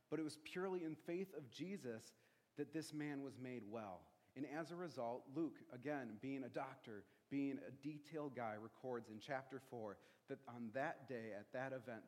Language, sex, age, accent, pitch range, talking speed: English, male, 40-59, American, 115-140 Hz, 190 wpm